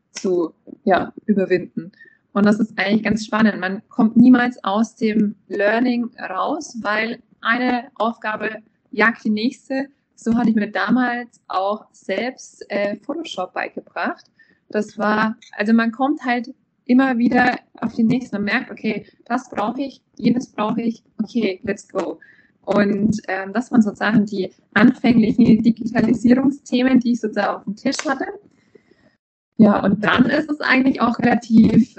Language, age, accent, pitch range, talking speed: German, 20-39, German, 205-245 Hz, 145 wpm